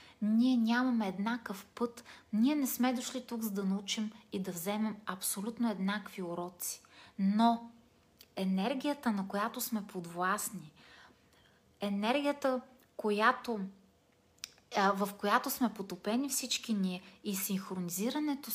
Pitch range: 190-240 Hz